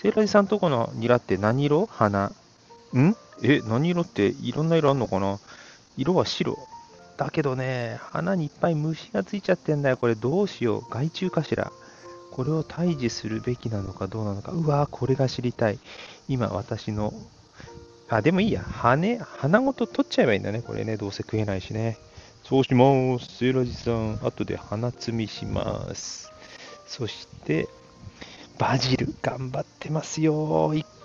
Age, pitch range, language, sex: 40-59, 110-150 Hz, Japanese, male